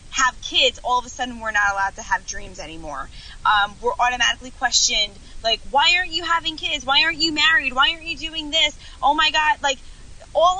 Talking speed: 210 wpm